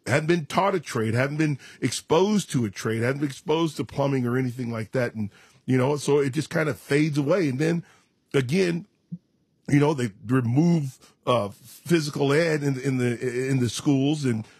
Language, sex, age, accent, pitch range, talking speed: English, male, 50-69, American, 120-150 Hz, 195 wpm